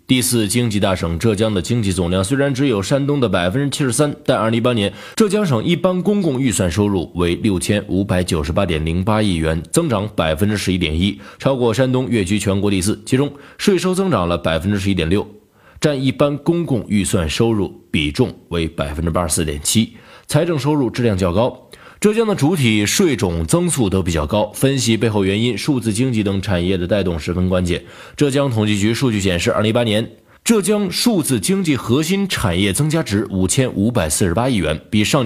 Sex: male